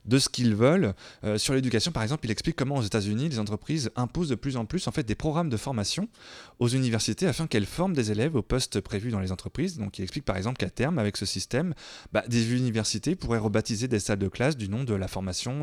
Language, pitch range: French, 105-145 Hz